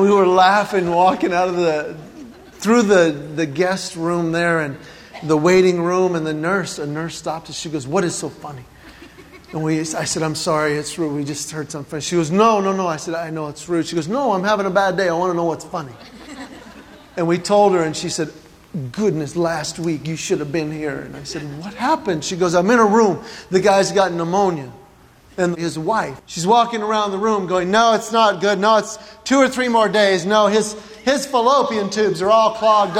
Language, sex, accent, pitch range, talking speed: English, male, American, 165-220 Hz, 225 wpm